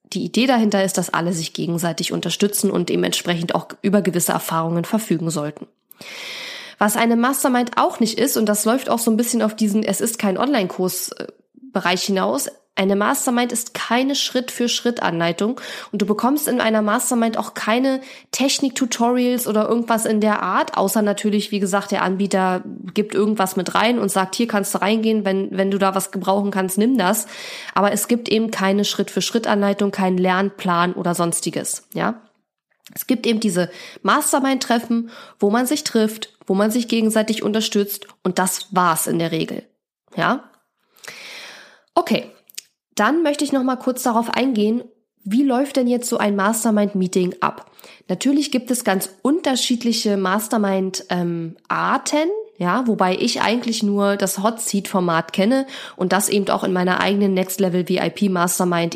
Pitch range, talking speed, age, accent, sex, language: 190-240 Hz, 155 wpm, 20-39, German, female, German